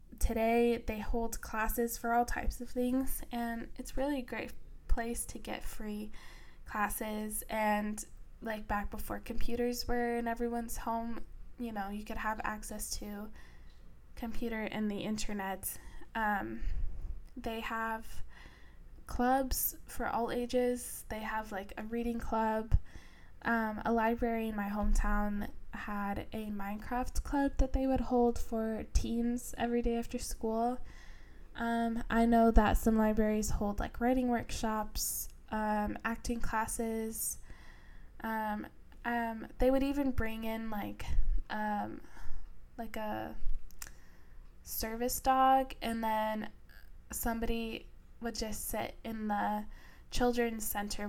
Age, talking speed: 10-29, 125 wpm